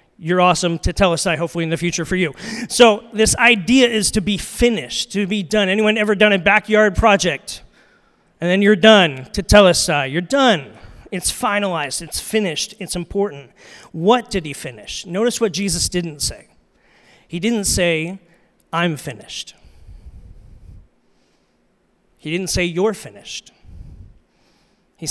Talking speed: 155 wpm